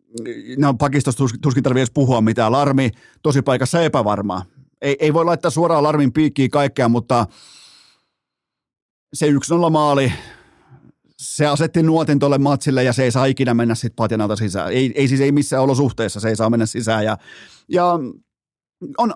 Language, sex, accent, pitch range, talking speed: Finnish, male, native, 125-160 Hz, 155 wpm